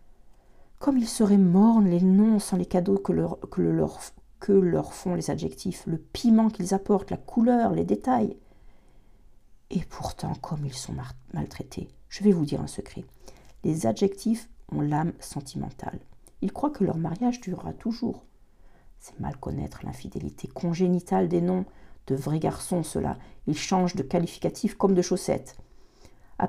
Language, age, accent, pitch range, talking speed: French, 50-69, French, 185-245 Hz, 160 wpm